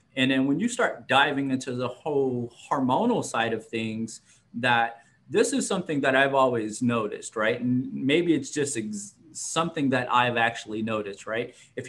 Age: 30-49